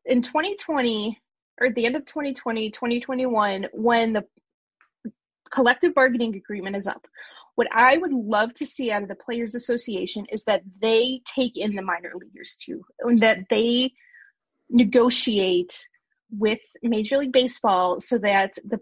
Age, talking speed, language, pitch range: 20-39, 150 wpm, English, 225-290 Hz